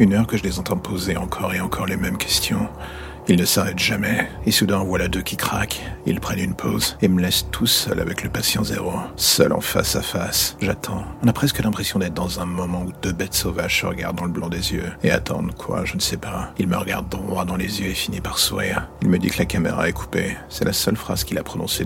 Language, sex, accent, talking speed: French, male, French, 260 wpm